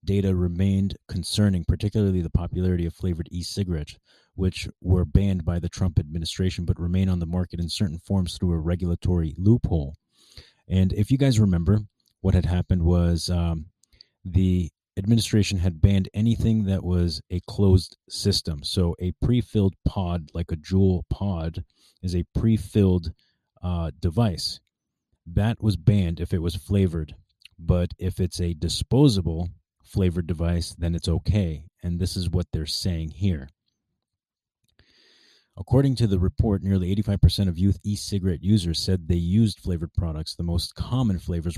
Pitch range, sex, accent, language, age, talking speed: 85-100 Hz, male, American, English, 30-49, 150 wpm